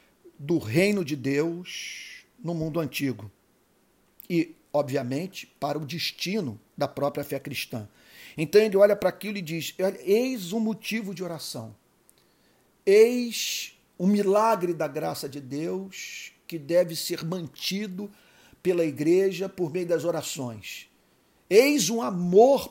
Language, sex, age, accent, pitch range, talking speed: Portuguese, male, 50-69, Brazilian, 150-185 Hz, 125 wpm